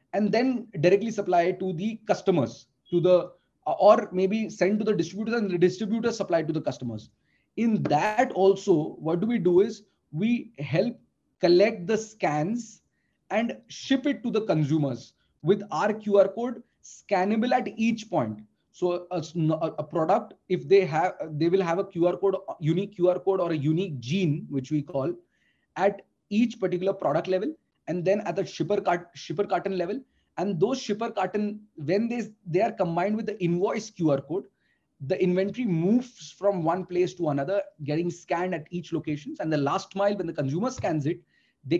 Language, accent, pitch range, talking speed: English, Indian, 160-205 Hz, 175 wpm